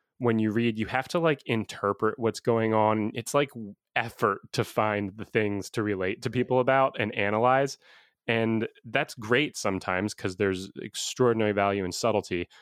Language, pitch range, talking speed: English, 105-125 Hz, 165 wpm